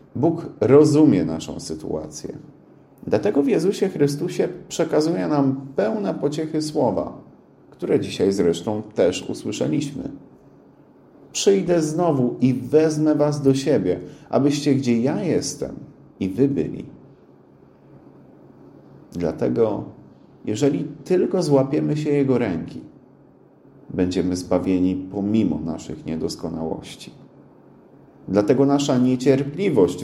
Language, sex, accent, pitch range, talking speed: Polish, male, native, 110-150 Hz, 95 wpm